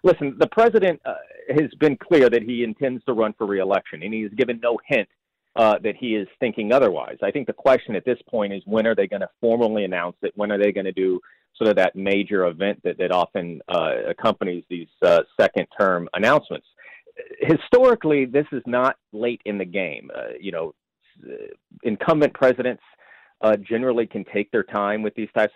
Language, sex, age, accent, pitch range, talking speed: English, male, 40-59, American, 100-130 Hz, 200 wpm